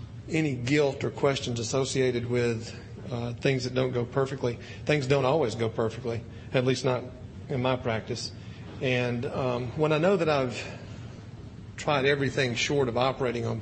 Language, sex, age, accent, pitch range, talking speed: English, male, 40-59, American, 115-135 Hz, 160 wpm